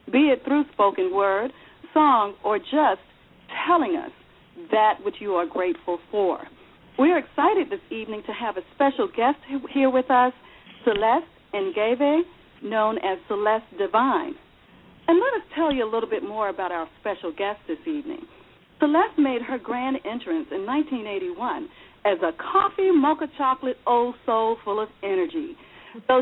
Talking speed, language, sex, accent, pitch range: 155 wpm, English, female, American, 210-315 Hz